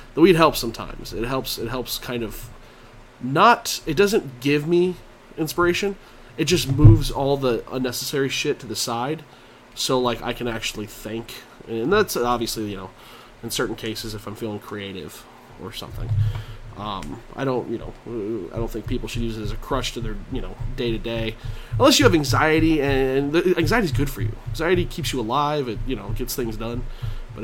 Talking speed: 195 wpm